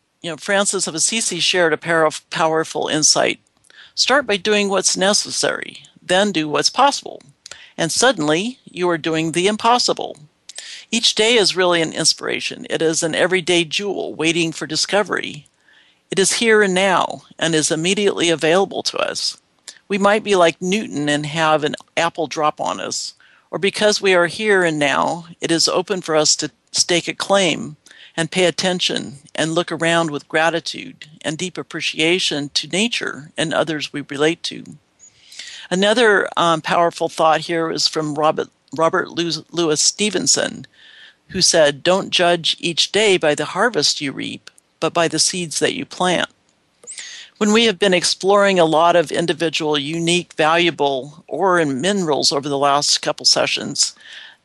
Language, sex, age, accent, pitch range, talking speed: English, male, 60-79, American, 155-195 Hz, 160 wpm